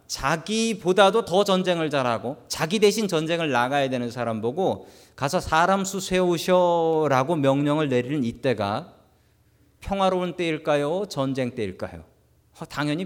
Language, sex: Korean, male